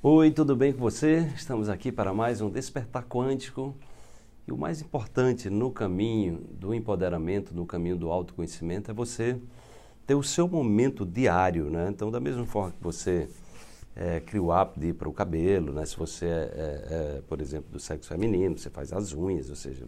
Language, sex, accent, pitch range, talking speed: Portuguese, male, Brazilian, 85-115 Hz, 190 wpm